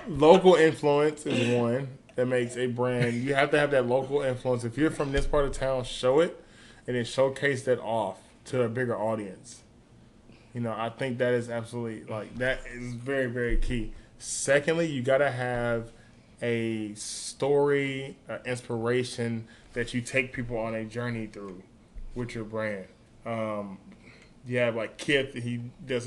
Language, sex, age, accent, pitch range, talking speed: English, male, 10-29, American, 110-125 Hz, 165 wpm